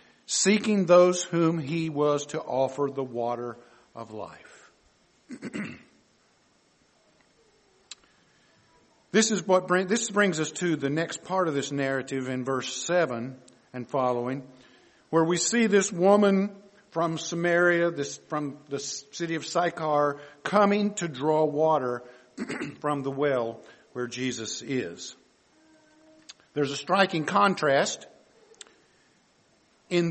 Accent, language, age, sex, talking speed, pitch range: American, English, 50-69, male, 115 wpm, 145-195 Hz